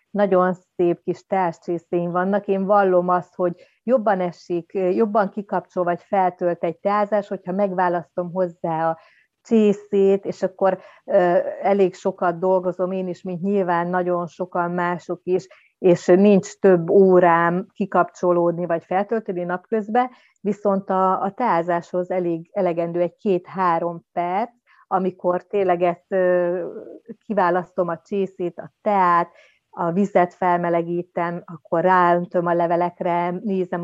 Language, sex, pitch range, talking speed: Hungarian, female, 175-200 Hz, 115 wpm